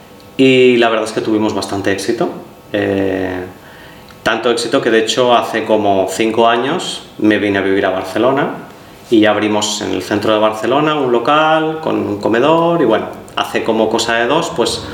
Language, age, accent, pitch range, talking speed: Spanish, 30-49, Spanish, 110-135 Hz, 180 wpm